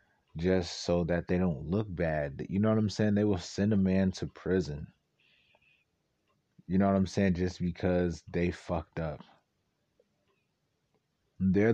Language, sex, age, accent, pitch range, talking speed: English, male, 30-49, American, 85-100 Hz, 155 wpm